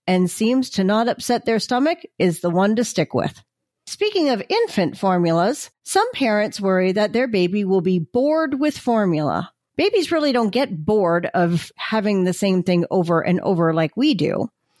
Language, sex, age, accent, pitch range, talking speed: English, female, 40-59, American, 180-275 Hz, 180 wpm